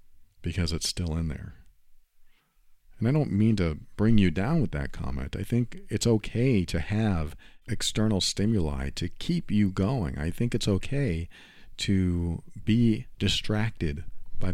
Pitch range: 85-115 Hz